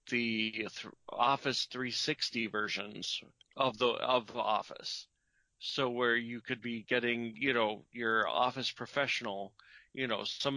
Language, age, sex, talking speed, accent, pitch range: English, 40-59, male, 130 wpm, American, 115-130 Hz